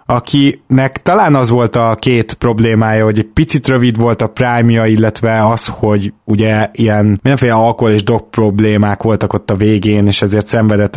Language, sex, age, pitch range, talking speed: Hungarian, male, 20-39, 105-120 Hz, 170 wpm